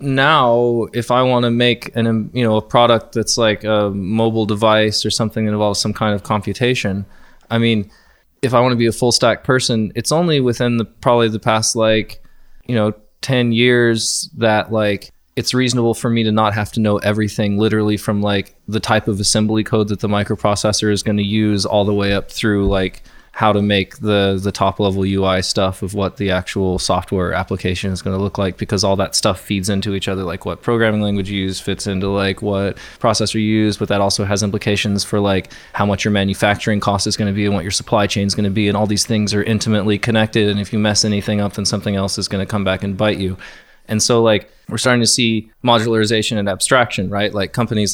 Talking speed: 230 wpm